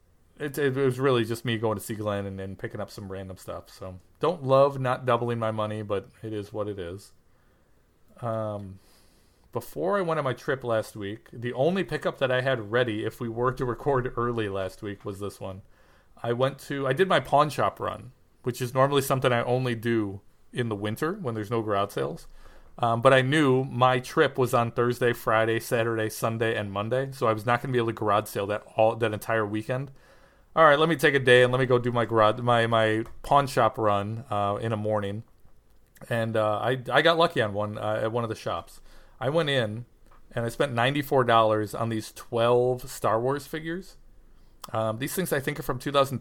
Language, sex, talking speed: English, male, 225 wpm